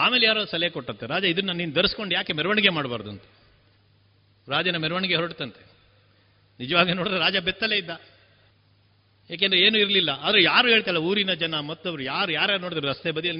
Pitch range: 105-175 Hz